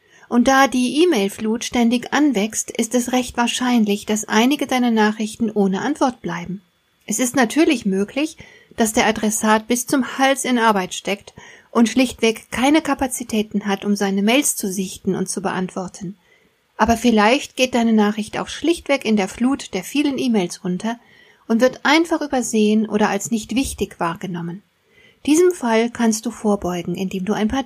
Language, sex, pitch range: German, female, 205-255 Hz